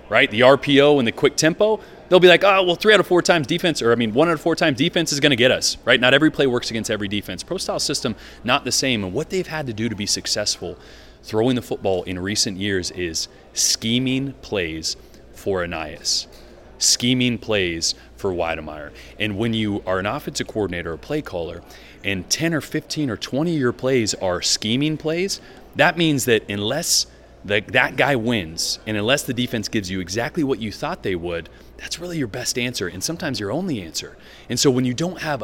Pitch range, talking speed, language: 100-145 Hz, 215 wpm, English